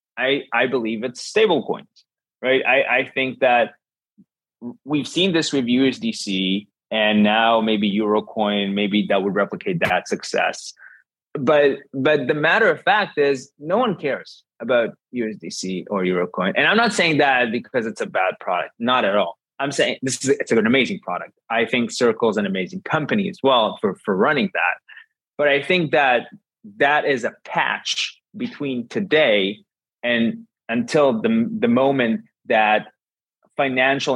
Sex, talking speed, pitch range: male, 160 wpm, 110-150 Hz